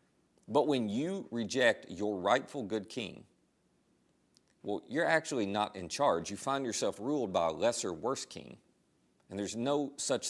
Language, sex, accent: English, male, American